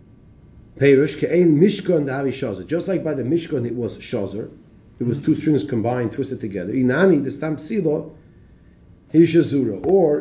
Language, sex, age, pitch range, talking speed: English, male, 40-59, 115-150 Hz, 130 wpm